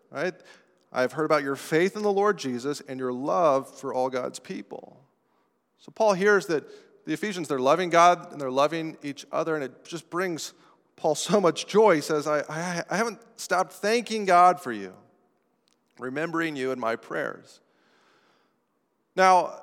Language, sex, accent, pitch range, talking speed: English, male, American, 150-195 Hz, 170 wpm